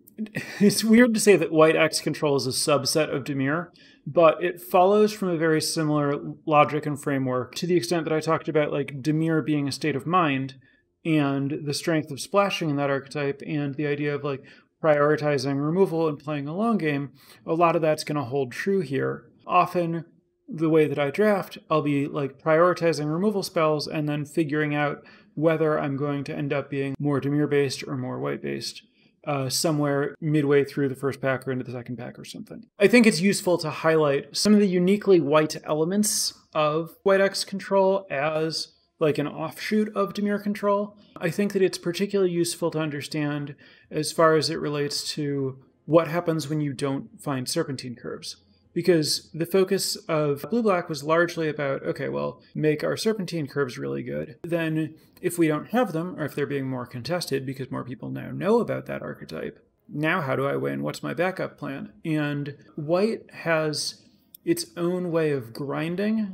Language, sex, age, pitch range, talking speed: English, male, 30-49, 140-175 Hz, 185 wpm